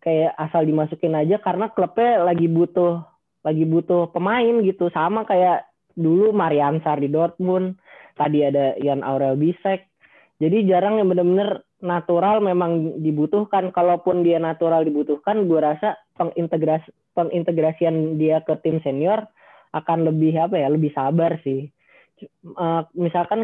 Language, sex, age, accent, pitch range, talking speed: Indonesian, female, 20-39, native, 145-180 Hz, 130 wpm